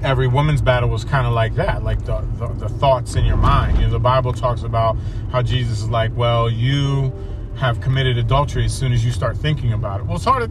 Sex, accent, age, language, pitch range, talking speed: male, American, 30-49, English, 110-135 Hz, 245 wpm